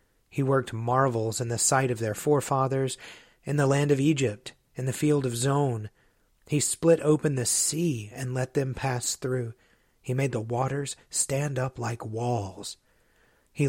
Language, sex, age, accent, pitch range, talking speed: English, male, 30-49, American, 115-140 Hz, 165 wpm